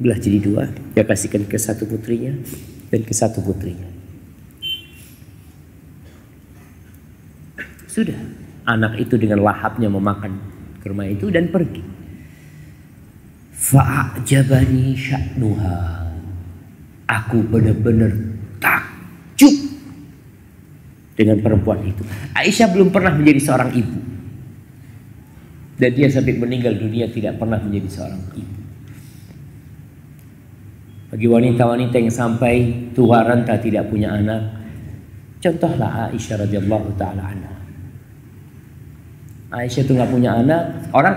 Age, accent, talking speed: 50-69, native, 100 wpm